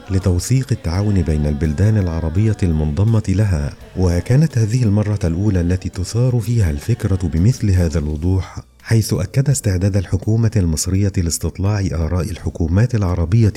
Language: Arabic